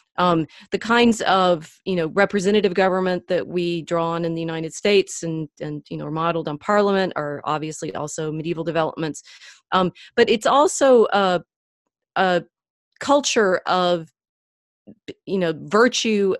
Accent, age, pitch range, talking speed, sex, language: American, 30-49, 165-195 Hz, 145 wpm, female, English